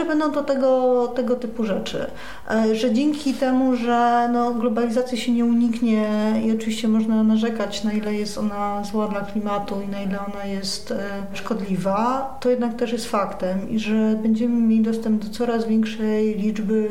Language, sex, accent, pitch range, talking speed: Polish, female, native, 210-235 Hz, 165 wpm